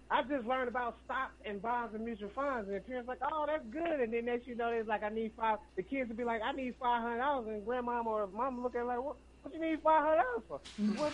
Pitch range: 190-250 Hz